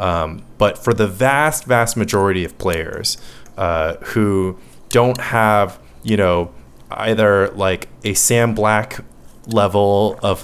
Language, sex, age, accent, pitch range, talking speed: English, male, 20-39, American, 90-115 Hz, 125 wpm